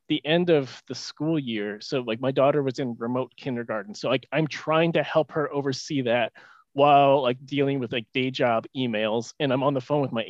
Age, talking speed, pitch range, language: 20-39, 215 wpm, 130-165 Hz, English